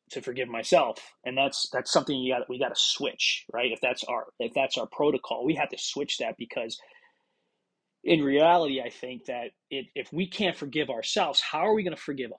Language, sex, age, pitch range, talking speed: English, male, 30-49, 130-155 Hz, 215 wpm